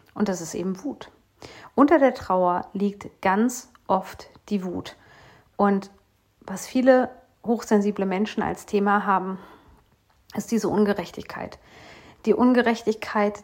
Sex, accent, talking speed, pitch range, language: female, German, 115 wpm, 190-210 Hz, German